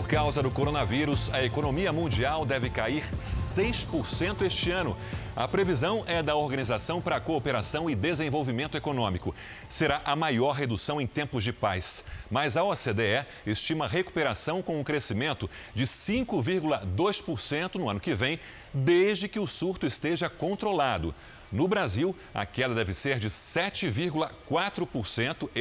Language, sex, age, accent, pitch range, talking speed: Portuguese, male, 30-49, Brazilian, 115-155 Hz, 140 wpm